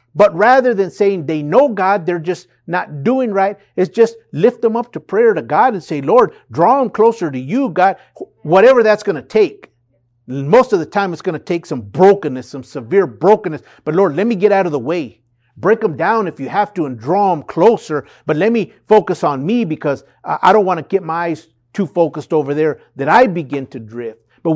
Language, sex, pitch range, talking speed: English, male, 130-210 Hz, 225 wpm